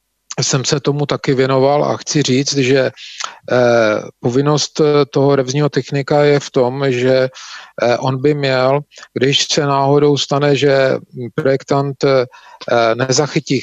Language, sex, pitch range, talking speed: Czech, male, 130-145 Hz, 120 wpm